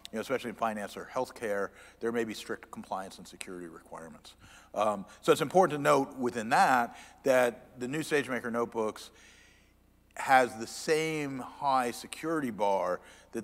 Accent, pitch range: American, 105-135 Hz